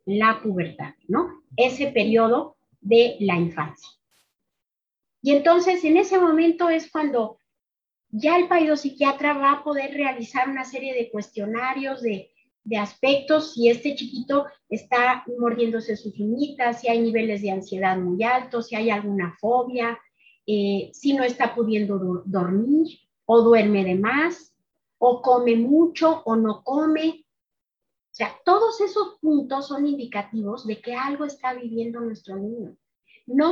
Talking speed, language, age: 140 wpm, Spanish, 40-59